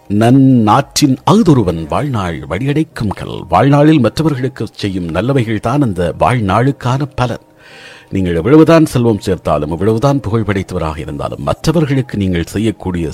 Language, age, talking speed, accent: Tamil, 50-69, 110 wpm, native